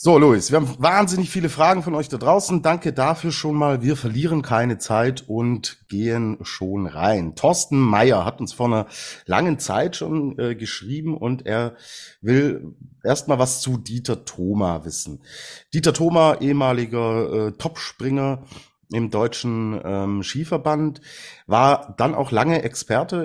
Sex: male